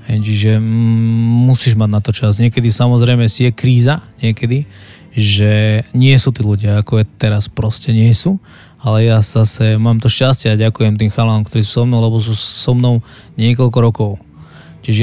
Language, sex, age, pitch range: Slovak, male, 20-39, 115-130 Hz